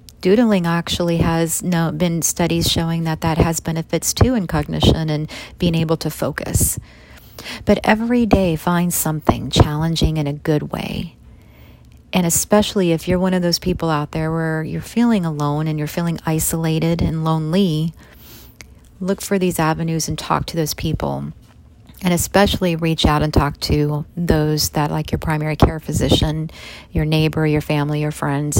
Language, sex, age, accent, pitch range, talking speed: English, female, 40-59, American, 150-175 Hz, 165 wpm